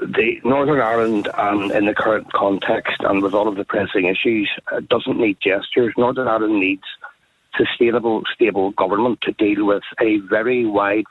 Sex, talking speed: male, 160 wpm